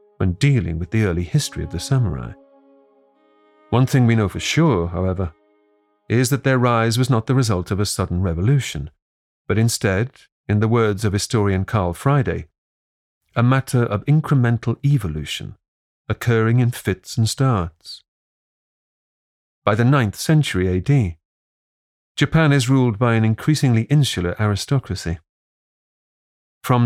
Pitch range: 90-125 Hz